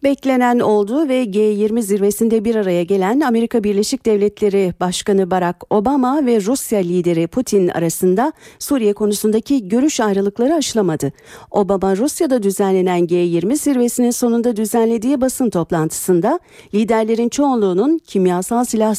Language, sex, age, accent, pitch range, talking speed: Turkish, female, 50-69, native, 185-250 Hz, 115 wpm